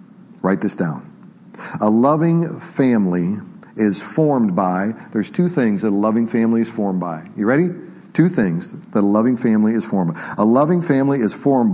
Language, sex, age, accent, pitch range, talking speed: English, male, 40-59, American, 120-175 Hz, 180 wpm